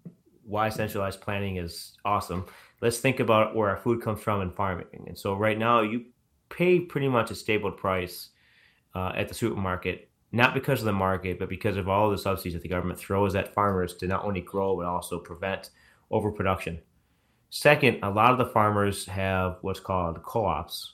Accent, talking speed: American, 185 wpm